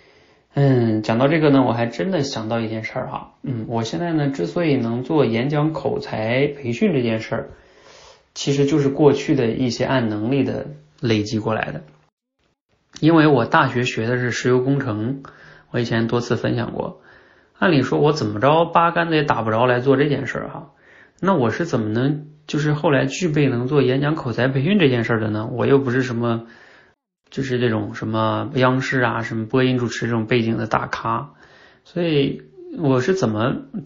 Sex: male